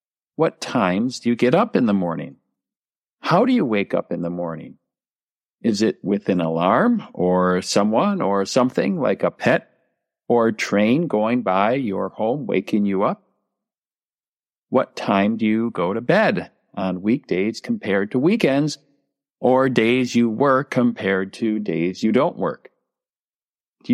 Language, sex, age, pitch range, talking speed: English, male, 50-69, 100-150 Hz, 155 wpm